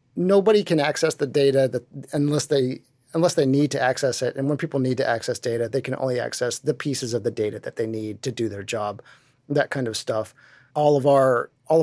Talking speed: 230 wpm